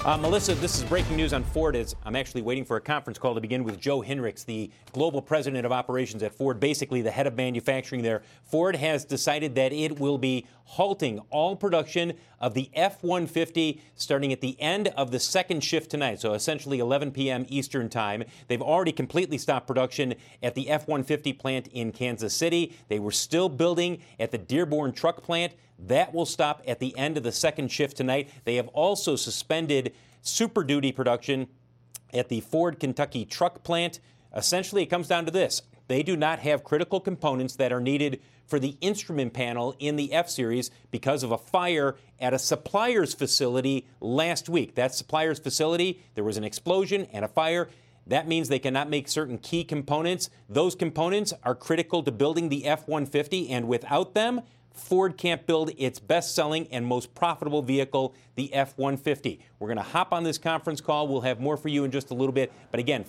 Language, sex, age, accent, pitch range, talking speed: English, male, 40-59, American, 125-160 Hz, 190 wpm